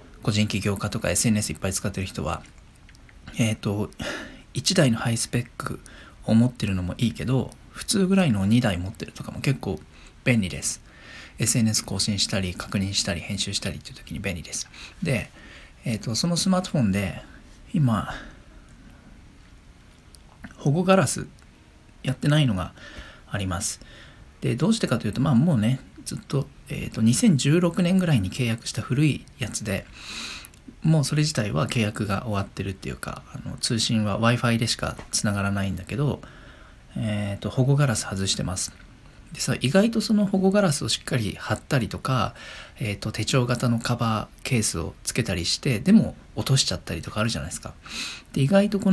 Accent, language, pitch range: native, Japanese, 100-130 Hz